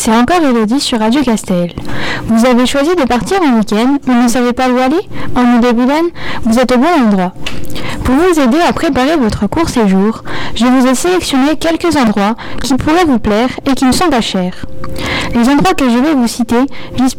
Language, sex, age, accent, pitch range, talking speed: French, female, 10-29, French, 230-295 Hz, 200 wpm